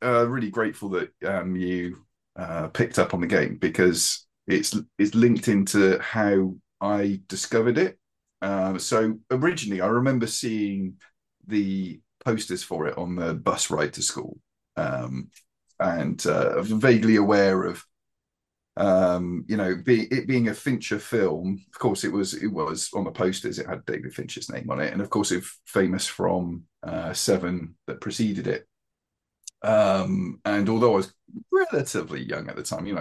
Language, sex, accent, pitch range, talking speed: English, male, British, 95-120 Hz, 175 wpm